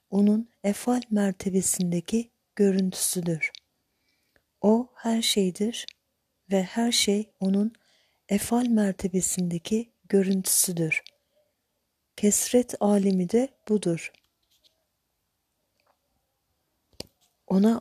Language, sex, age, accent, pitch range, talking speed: Turkish, female, 40-59, native, 185-220 Hz, 65 wpm